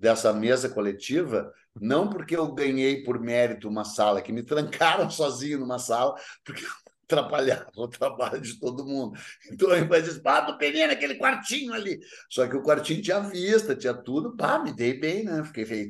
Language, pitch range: Portuguese, 115-165 Hz